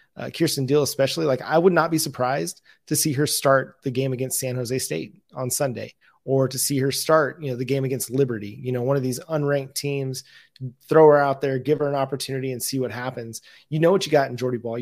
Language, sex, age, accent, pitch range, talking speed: English, male, 30-49, American, 125-150 Hz, 245 wpm